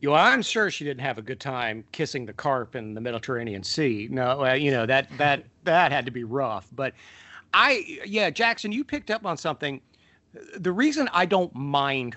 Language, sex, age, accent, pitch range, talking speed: English, male, 50-69, American, 125-175 Hz, 200 wpm